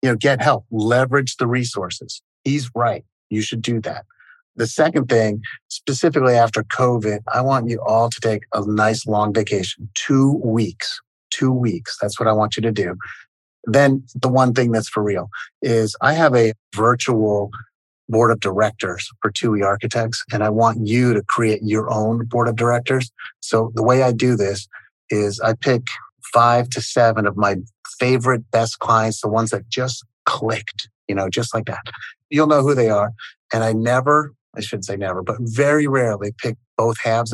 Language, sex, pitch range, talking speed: English, male, 105-120 Hz, 185 wpm